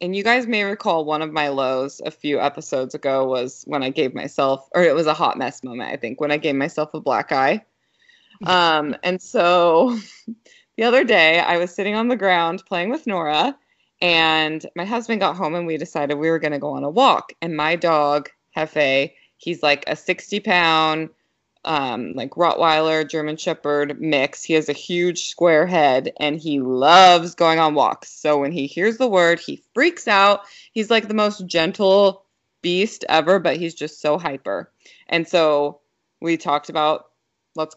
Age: 20-39